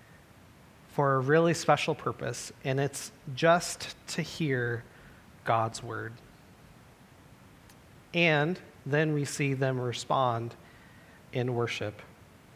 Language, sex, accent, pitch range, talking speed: English, male, American, 120-150 Hz, 95 wpm